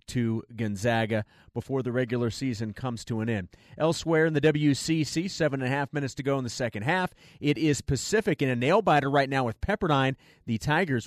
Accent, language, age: American, English, 30-49